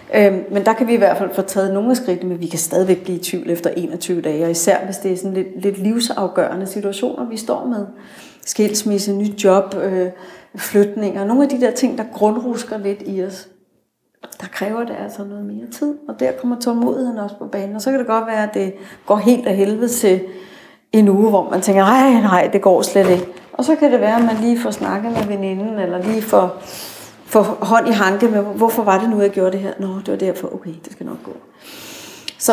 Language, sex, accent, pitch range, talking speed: Danish, female, native, 190-230 Hz, 230 wpm